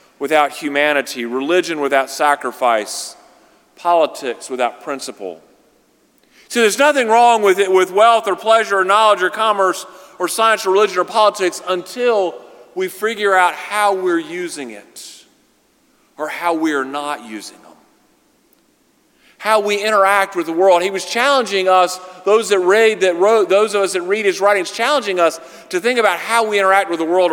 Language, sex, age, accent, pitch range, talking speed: English, male, 40-59, American, 170-225 Hz, 165 wpm